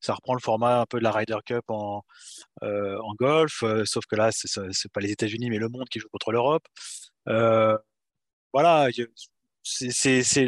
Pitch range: 115-155 Hz